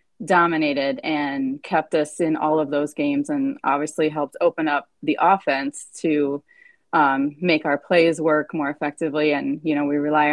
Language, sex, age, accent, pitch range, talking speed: English, female, 30-49, American, 150-215 Hz, 170 wpm